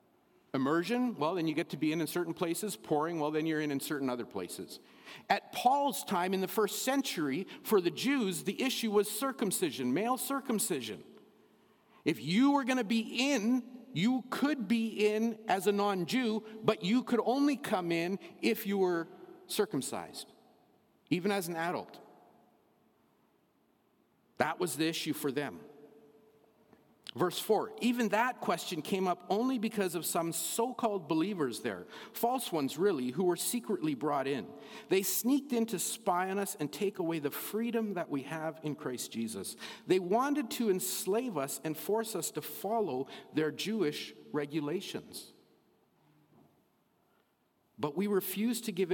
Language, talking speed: English, 155 wpm